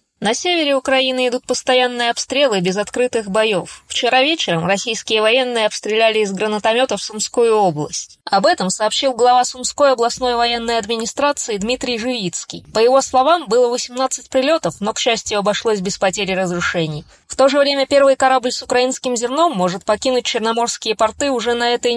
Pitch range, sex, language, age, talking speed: 205-260 Hz, female, Russian, 20-39, 155 wpm